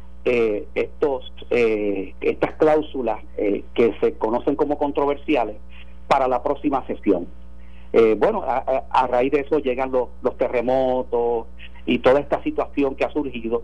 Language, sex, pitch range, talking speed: Spanish, male, 105-145 Hz, 145 wpm